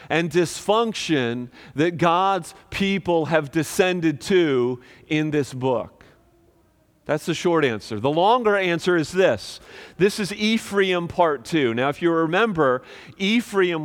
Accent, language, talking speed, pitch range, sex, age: American, English, 130 wpm, 150-195 Hz, male, 40-59